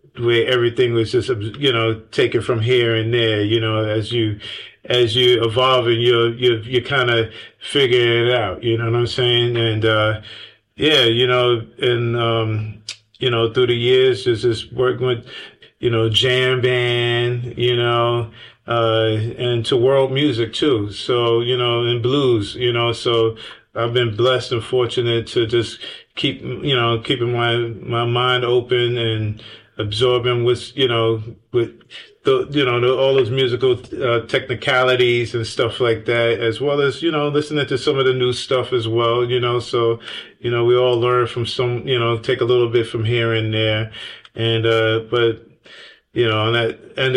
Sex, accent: male, American